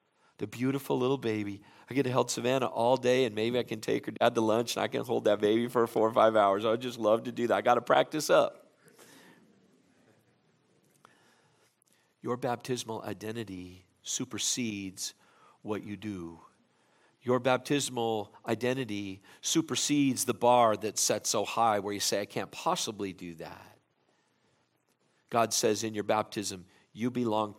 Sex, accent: male, American